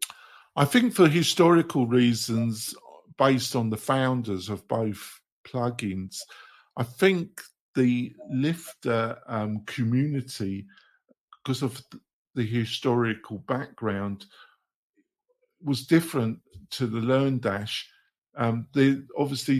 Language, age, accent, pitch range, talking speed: English, 50-69, British, 110-130 Hz, 95 wpm